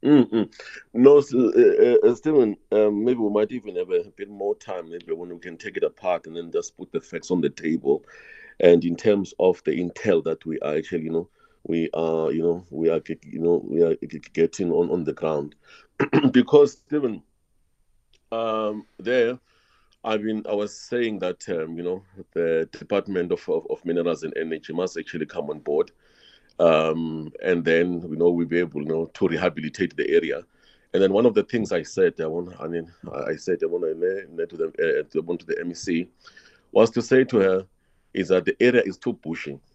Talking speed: 205 wpm